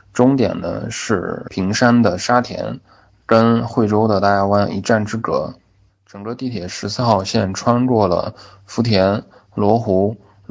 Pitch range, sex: 100-120 Hz, male